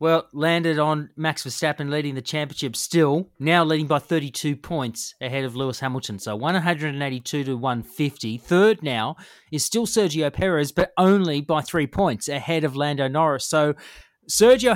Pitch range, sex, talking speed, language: 135-165 Hz, male, 160 wpm, English